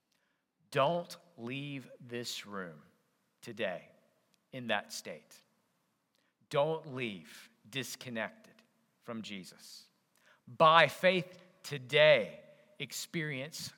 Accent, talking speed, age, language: American, 75 wpm, 40-59, English